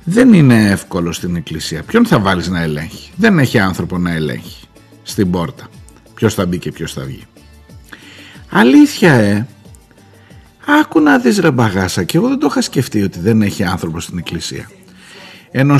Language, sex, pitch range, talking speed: Greek, male, 95-165 Hz, 165 wpm